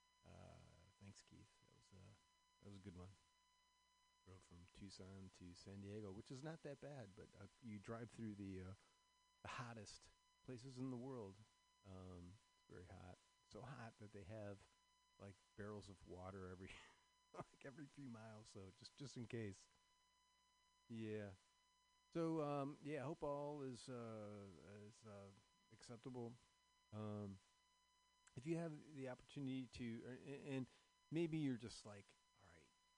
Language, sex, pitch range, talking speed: English, male, 100-145 Hz, 155 wpm